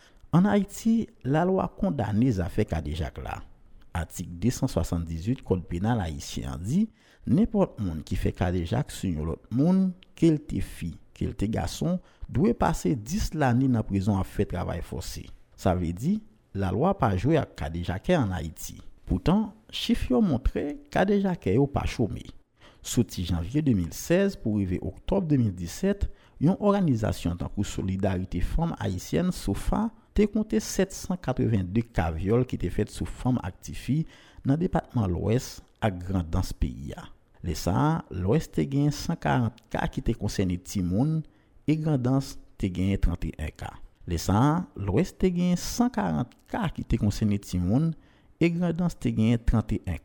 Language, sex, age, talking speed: French, male, 50-69, 140 wpm